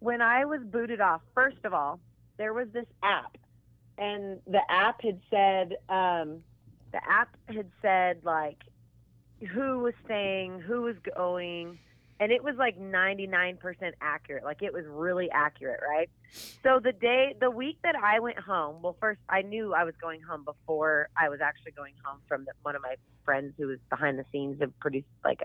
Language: English